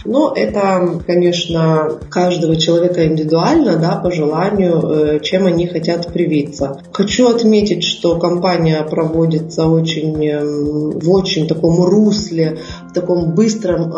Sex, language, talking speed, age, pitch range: female, Russian, 110 wpm, 30-49, 160-195 Hz